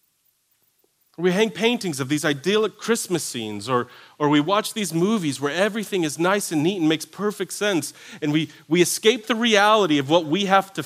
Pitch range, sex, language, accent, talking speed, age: 150-205 Hz, male, English, American, 195 wpm, 40-59